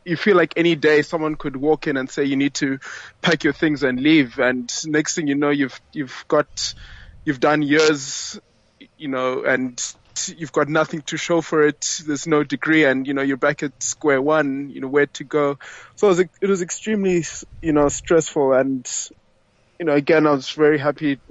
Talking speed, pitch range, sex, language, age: 205 wpm, 135-160 Hz, male, English, 20-39